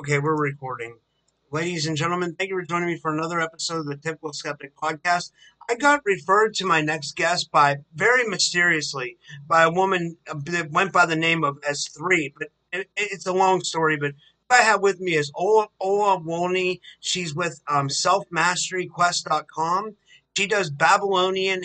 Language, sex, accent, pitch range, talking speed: English, male, American, 150-180 Hz, 170 wpm